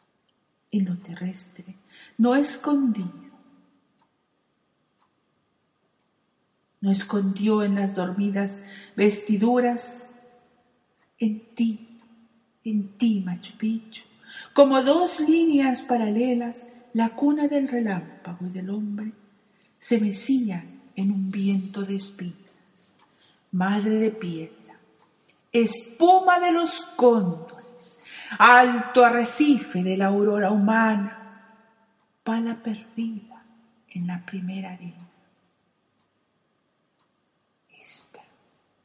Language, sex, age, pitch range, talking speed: Spanish, female, 50-69, 200-245 Hz, 85 wpm